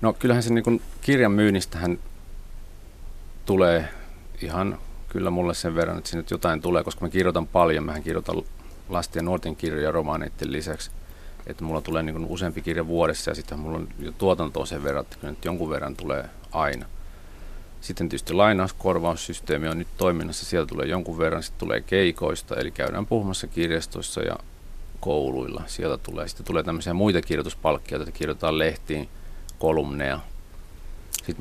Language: Finnish